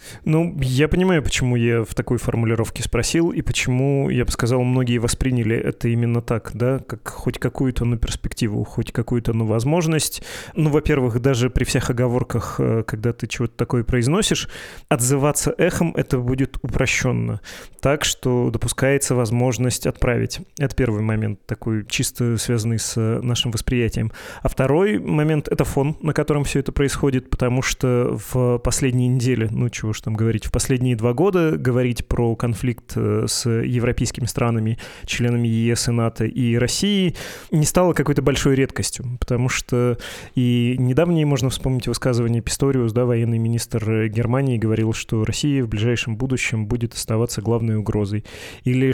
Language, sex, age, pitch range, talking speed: Russian, male, 20-39, 115-130 Hz, 150 wpm